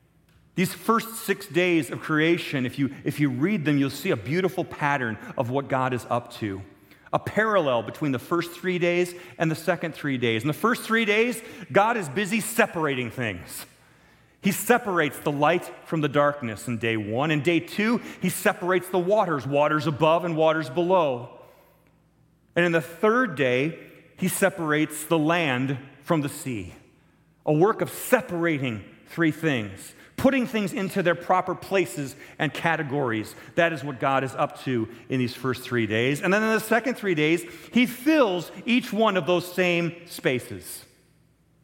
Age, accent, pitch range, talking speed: 40-59, American, 135-180 Hz, 170 wpm